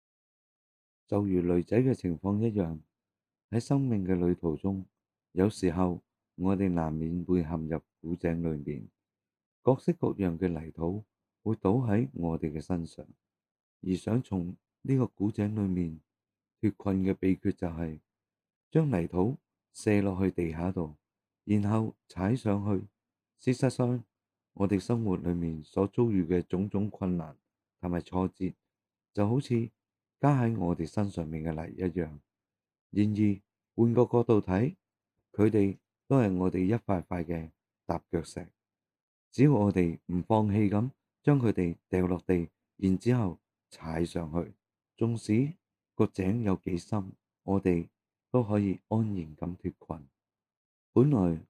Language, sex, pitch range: Chinese, male, 85-105 Hz